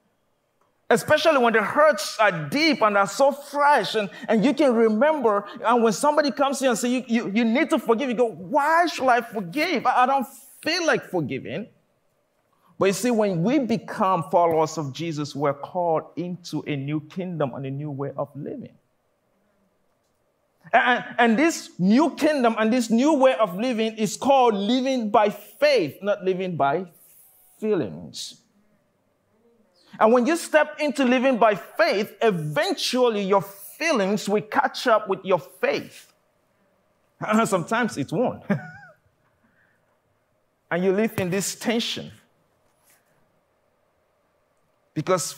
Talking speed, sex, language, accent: 145 wpm, male, English, Nigerian